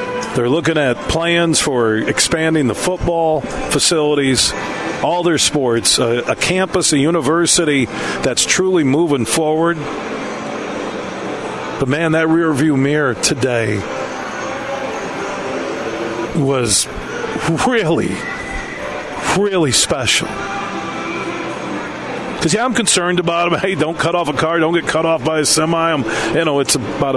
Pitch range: 135-165 Hz